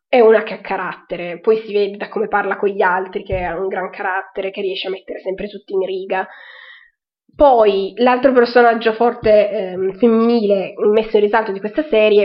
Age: 20-39